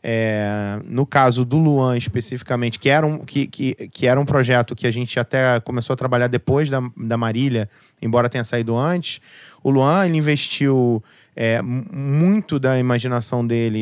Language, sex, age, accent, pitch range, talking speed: Portuguese, male, 20-39, Brazilian, 120-145 Hz, 140 wpm